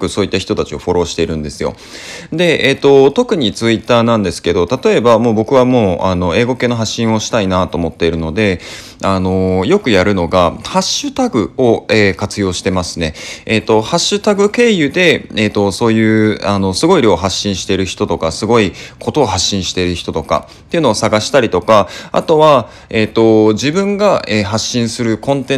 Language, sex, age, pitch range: Japanese, male, 20-39, 95-135 Hz